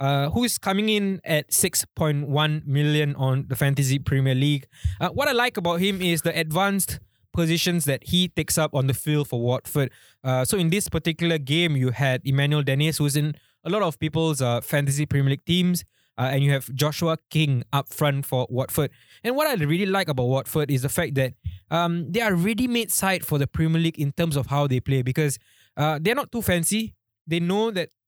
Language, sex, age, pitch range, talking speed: English, male, 20-39, 135-175 Hz, 205 wpm